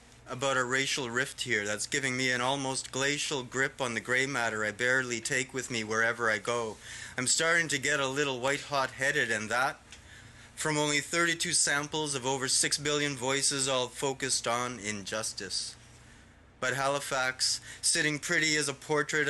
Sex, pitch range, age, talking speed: male, 120-145 Hz, 30-49, 170 wpm